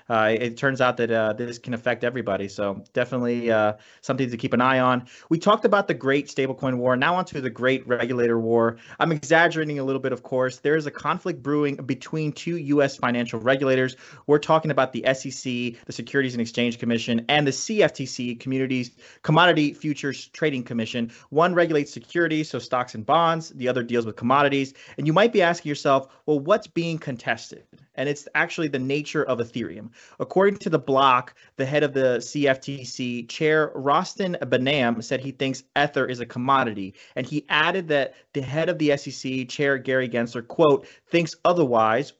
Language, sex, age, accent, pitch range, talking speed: English, male, 30-49, American, 125-150 Hz, 185 wpm